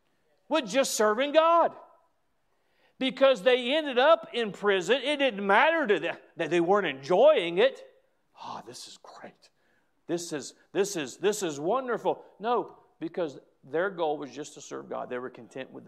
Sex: male